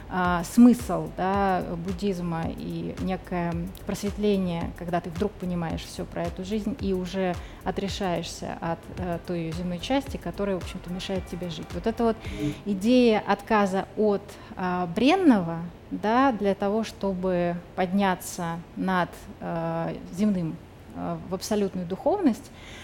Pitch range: 180-225 Hz